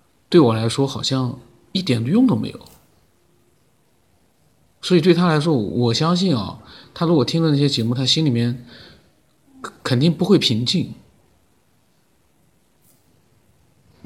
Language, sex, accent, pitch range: Chinese, male, native, 120-145 Hz